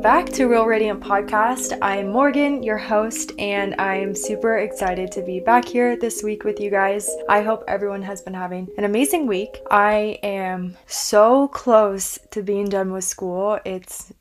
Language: English